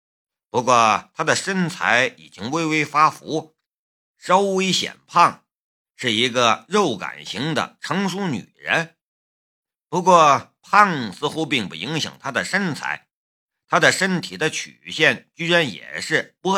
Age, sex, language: 50-69, male, Chinese